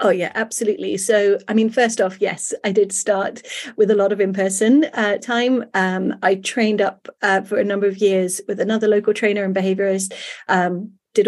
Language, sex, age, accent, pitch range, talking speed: English, female, 30-49, British, 195-235 Hz, 195 wpm